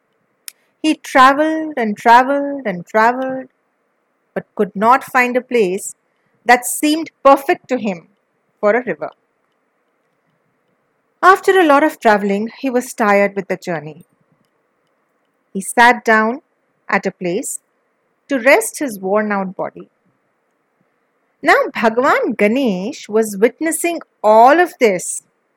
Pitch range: 210-305 Hz